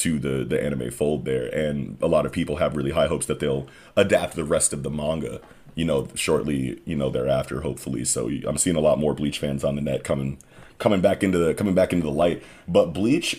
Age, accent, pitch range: 30-49, American, 70-85 Hz